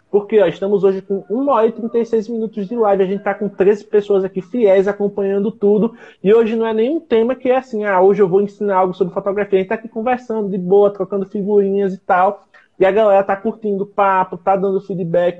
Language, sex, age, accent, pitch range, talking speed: Portuguese, male, 20-39, Brazilian, 150-200 Hz, 230 wpm